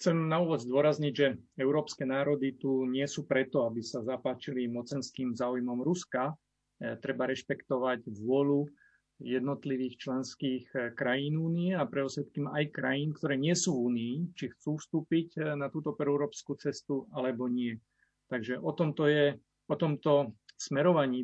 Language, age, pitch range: Slovak, 40-59, 130-150 Hz